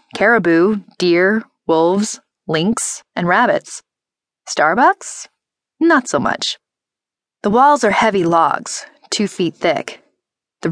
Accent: American